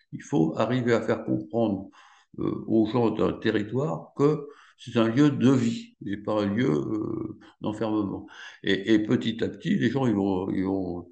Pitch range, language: 100-125 Hz, French